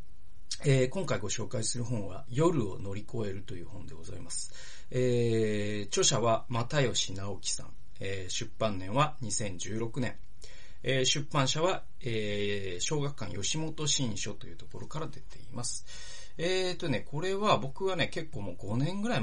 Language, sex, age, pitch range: Japanese, male, 40-59, 100-135 Hz